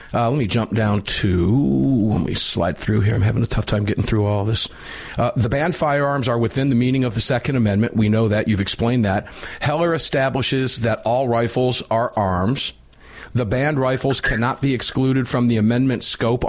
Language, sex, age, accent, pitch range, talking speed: English, male, 40-59, American, 105-130 Hz, 200 wpm